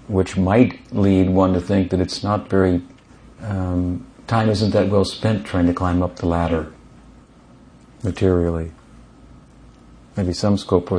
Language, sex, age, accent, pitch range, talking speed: English, male, 50-69, American, 85-100 Hz, 145 wpm